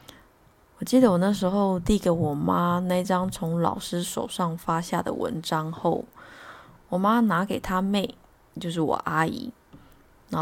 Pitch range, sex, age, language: 165-225 Hz, female, 20-39, Chinese